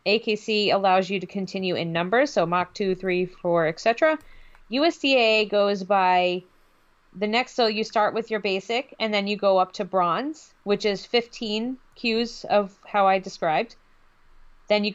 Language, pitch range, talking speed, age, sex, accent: English, 190-225 Hz, 165 wpm, 30-49, female, American